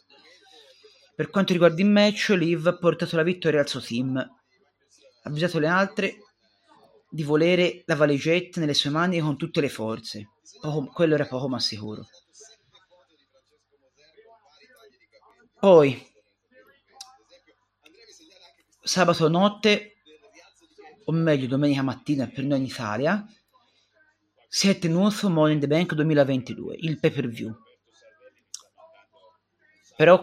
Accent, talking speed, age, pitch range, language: native, 115 wpm, 40-59, 145-200 Hz, Italian